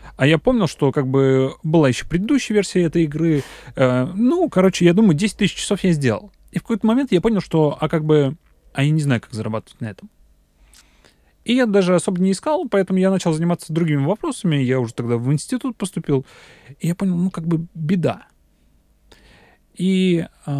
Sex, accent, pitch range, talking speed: male, native, 135-190 Hz, 190 wpm